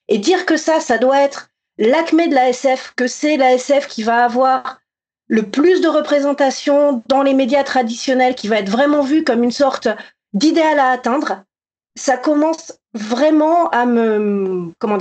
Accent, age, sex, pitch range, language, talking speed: French, 40-59, female, 245-300 Hz, French, 170 wpm